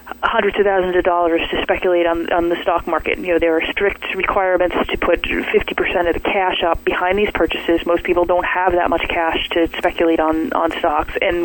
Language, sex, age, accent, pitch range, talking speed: English, female, 20-39, American, 170-200 Hz, 215 wpm